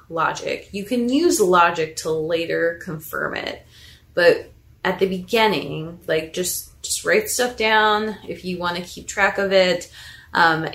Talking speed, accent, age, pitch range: 155 wpm, American, 20-39, 160-195 Hz